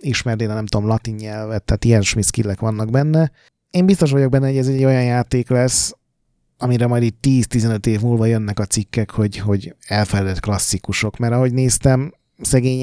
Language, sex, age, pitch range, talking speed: Hungarian, male, 30-49, 110-130 Hz, 175 wpm